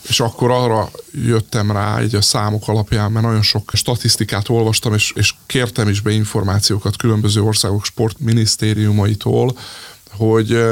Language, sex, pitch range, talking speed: Hungarian, male, 105-120 Hz, 135 wpm